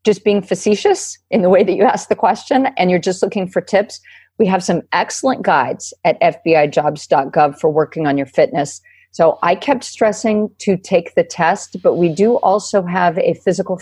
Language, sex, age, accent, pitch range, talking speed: English, female, 50-69, American, 155-195 Hz, 190 wpm